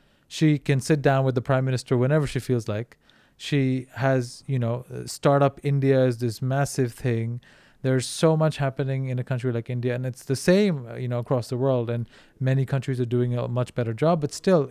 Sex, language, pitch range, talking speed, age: male, English, 125-145 Hz, 210 wpm, 30-49